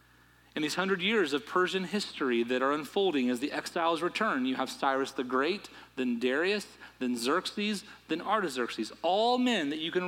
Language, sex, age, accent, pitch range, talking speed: English, male, 40-59, American, 115-155 Hz, 180 wpm